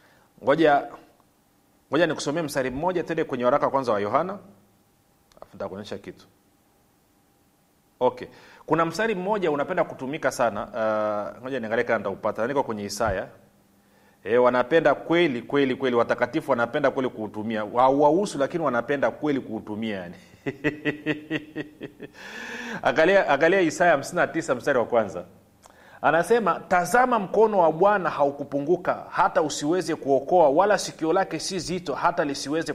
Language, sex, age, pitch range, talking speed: Swahili, male, 40-59, 125-180 Hz, 120 wpm